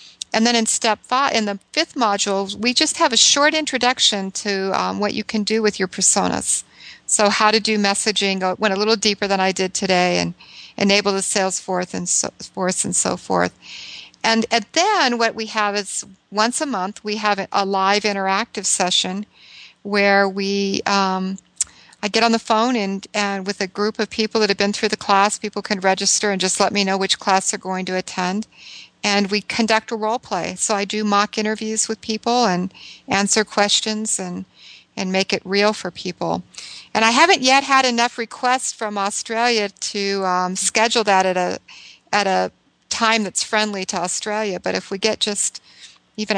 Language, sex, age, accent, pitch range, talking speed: English, female, 50-69, American, 190-220 Hz, 195 wpm